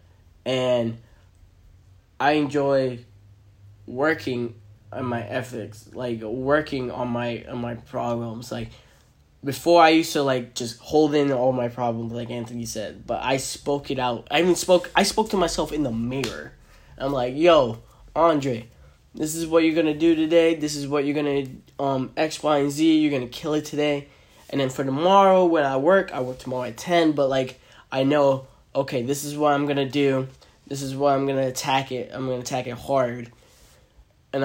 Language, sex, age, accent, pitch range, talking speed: English, male, 10-29, American, 120-150 Hz, 190 wpm